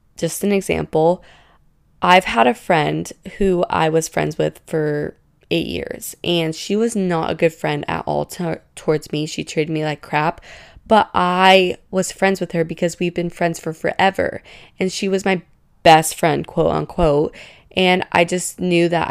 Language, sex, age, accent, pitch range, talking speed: English, female, 20-39, American, 150-180 Hz, 175 wpm